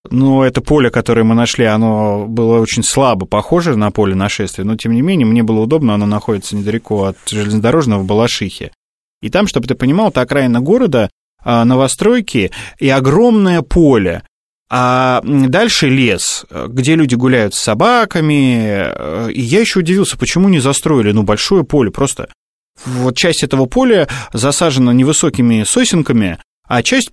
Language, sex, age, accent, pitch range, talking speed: Russian, male, 20-39, native, 110-145 Hz, 150 wpm